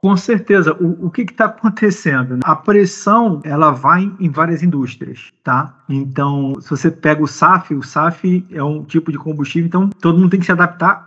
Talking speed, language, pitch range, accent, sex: 195 wpm, English, 140-180 Hz, Brazilian, male